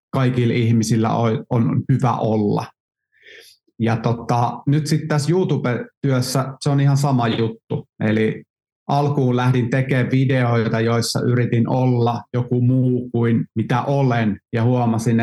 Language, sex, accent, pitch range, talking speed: Finnish, male, native, 115-135 Hz, 120 wpm